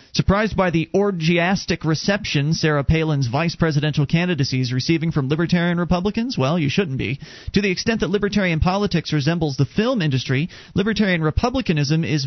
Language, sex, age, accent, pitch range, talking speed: English, male, 30-49, American, 140-185 Hz, 155 wpm